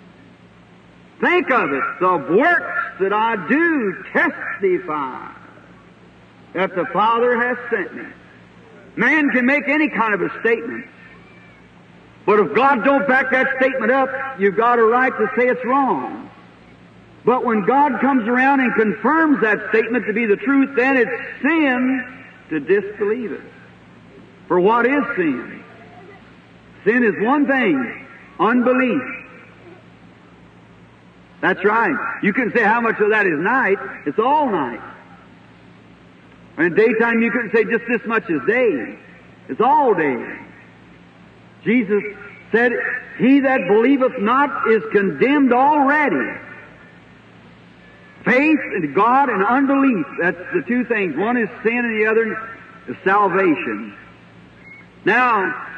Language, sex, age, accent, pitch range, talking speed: English, male, 60-79, American, 220-275 Hz, 130 wpm